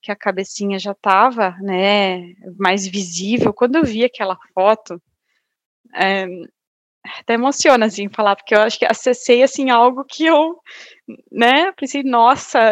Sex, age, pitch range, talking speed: female, 20-39, 205-275 Hz, 140 wpm